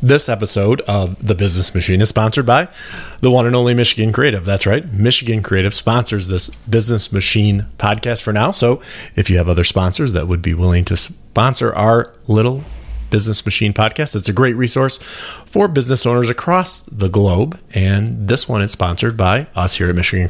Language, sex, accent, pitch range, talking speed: English, male, American, 95-120 Hz, 185 wpm